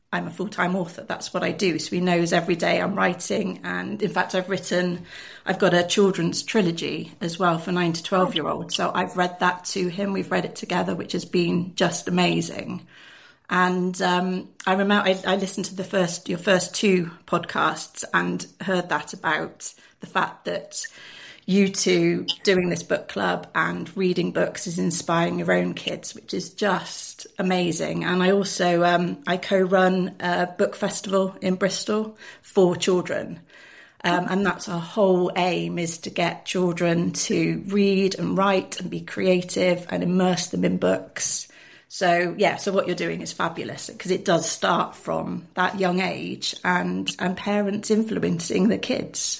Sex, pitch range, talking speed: female, 175-190 Hz, 175 wpm